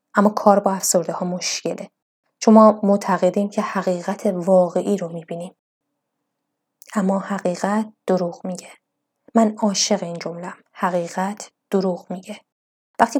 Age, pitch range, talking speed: 20-39, 185-215 Hz, 120 wpm